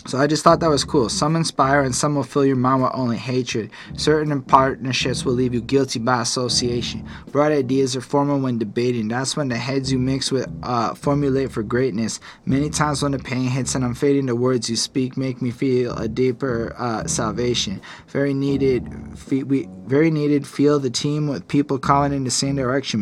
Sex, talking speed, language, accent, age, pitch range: male, 205 wpm, English, American, 20-39, 120-145 Hz